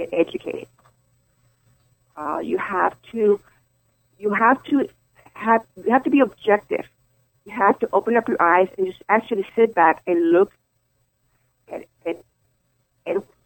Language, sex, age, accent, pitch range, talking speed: English, female, 50-69, American, 150-245 Hz, 140 wpm